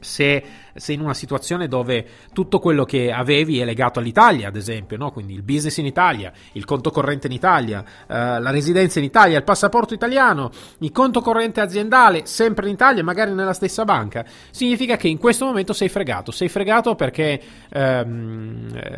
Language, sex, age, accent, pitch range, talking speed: Italian, male, 30-49, native, 120-170 Hz, 175 wpm